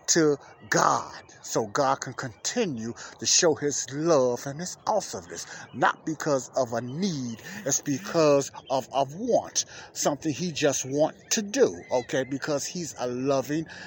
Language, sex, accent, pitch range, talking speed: English, male, American, 125-160 Hz, 145 wpm